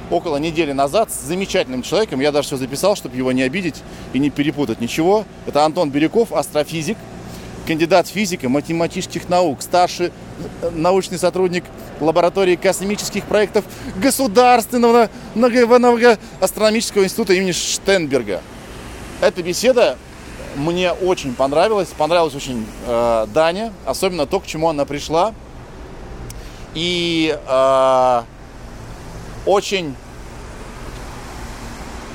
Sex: male